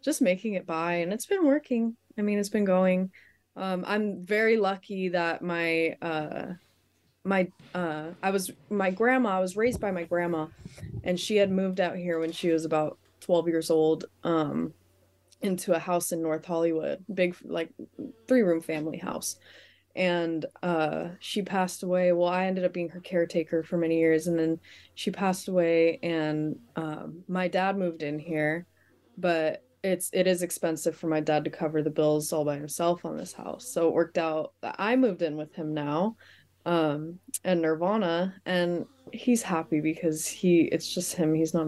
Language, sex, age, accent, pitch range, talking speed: English, female, 20-39, American, 155-185 Hz, 185 wpm